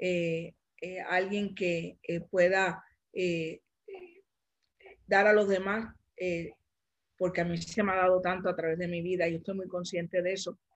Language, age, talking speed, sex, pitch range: Spanish, 50-69, 180 wpm, female, 175-200 Hz